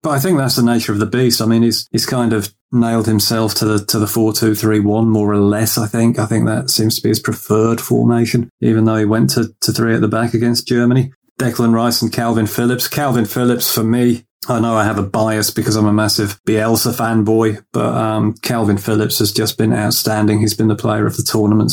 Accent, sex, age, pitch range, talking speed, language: British, male, 30-49, 105-115 Hz, 230 wpm, English